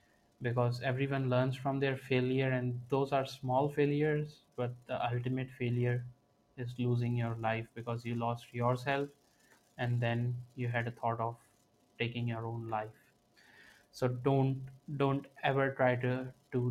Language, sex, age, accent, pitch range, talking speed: English, male, 20-39, Indian, 120-140 Hz, 145 wpm